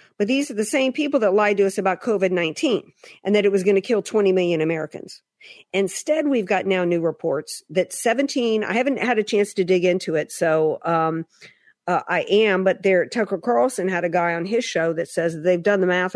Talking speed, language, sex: 225 wpm, English, female